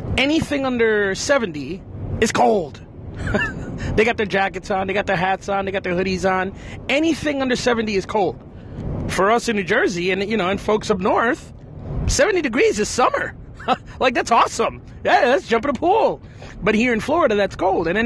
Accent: American